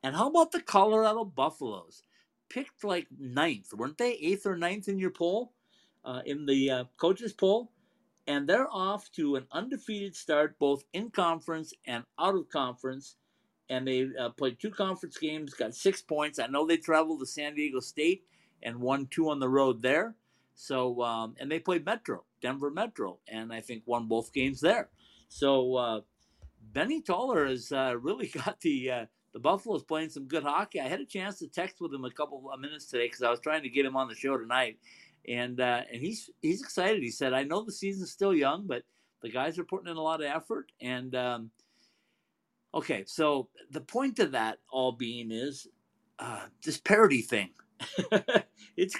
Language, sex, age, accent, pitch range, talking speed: English, male, 50-69, American, 130-190 Hz, 190 wpm